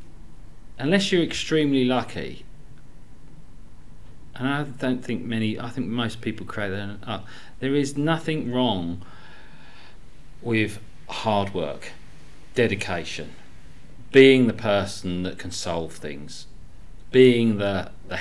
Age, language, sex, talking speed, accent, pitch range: 40-59, English, male, 105 wpm, British, 90-115 Hz